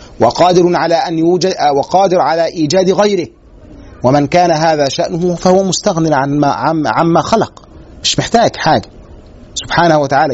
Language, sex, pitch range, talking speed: Arabic, male, 140-190 Hz, 140 wpm